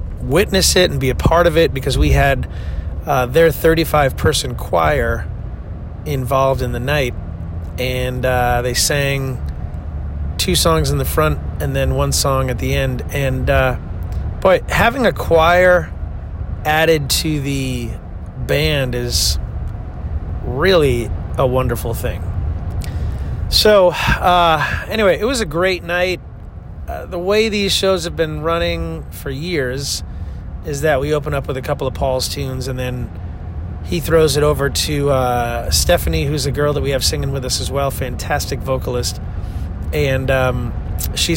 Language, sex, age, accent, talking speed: English, male, 30-49, American, 150 wpm